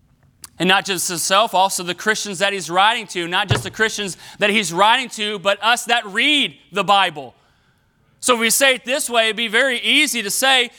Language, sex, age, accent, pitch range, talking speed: English, male, 30-49, American, 155-235 Hz, 210 wpm